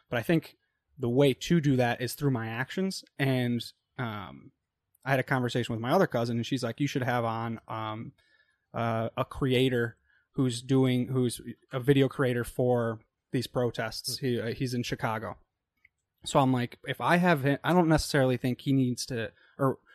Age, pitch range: 20-39, 115-140 Hz